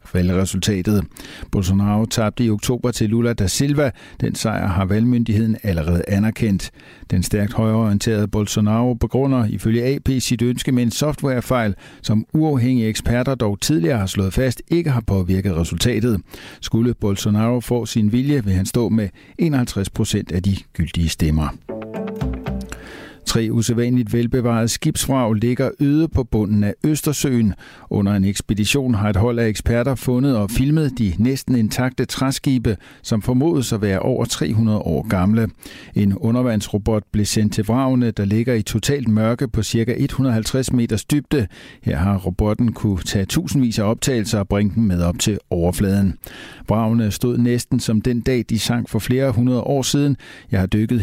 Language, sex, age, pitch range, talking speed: Danish, male, 60-79, 105-125 Hz, 155 wpm